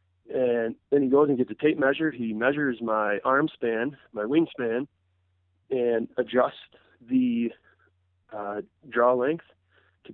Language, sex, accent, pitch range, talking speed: English, male, American, 95-135 Hz, 135 wpm